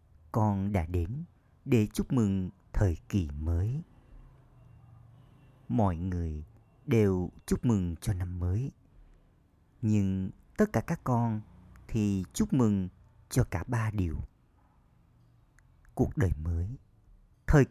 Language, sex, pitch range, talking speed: Vietnamese, male, 95-120 Hz, 110 wpm